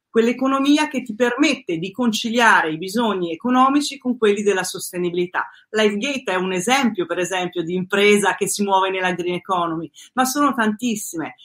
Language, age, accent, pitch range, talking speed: Italian, 40-59, native, 185-240 Hz, 155 wpm